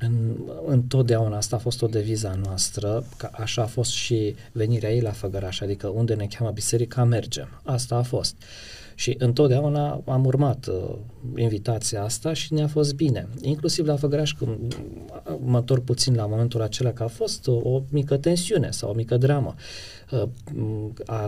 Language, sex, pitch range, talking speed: Romanian, male, 110-140 Hz, 155 wpm